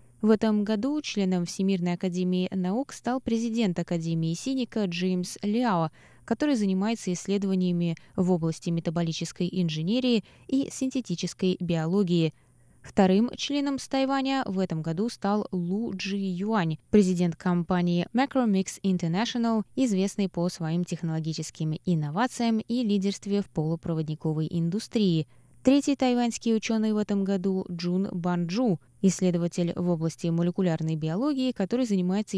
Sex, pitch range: female, 170-225 Hz